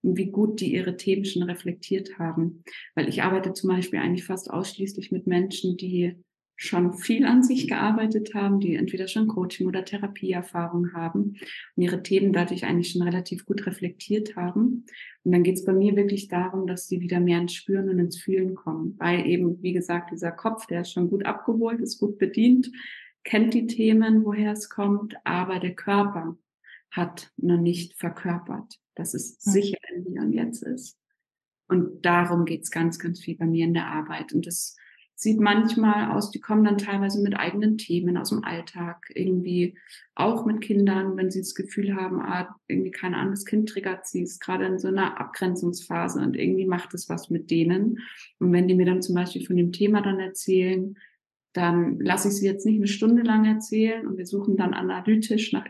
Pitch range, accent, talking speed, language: 175-210 Hz, German, 195 wpm, German